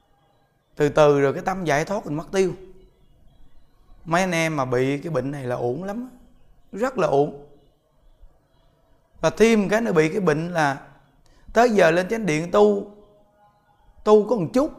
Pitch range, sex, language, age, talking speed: 140-200 Hz, male, Vietnamese, 20-39, 170 wpm